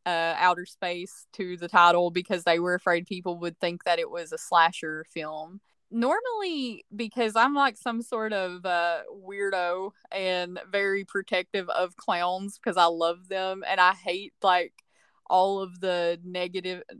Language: English